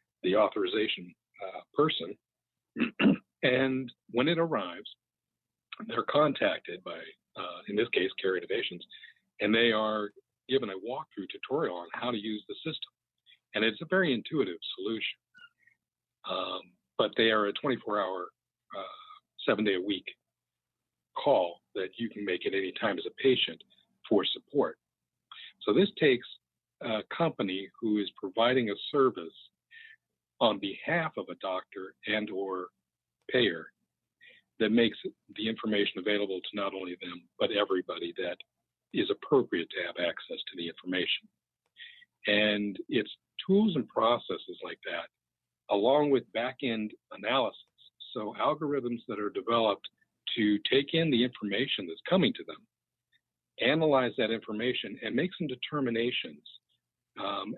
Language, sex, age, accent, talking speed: English, male, 50-69, American, 135 wpm